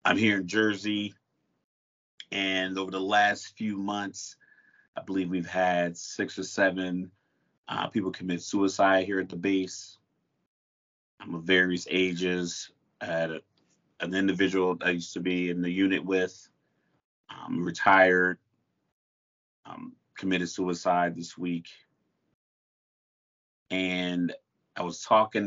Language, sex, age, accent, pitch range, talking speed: English, male, 30-49, American, 85-95 Hz, 125 wpm